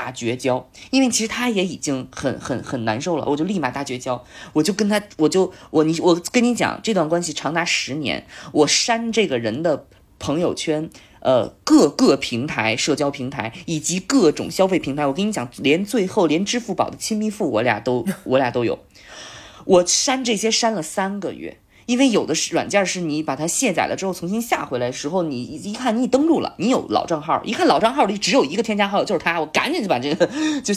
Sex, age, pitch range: female, 20-39, 145-205 Hz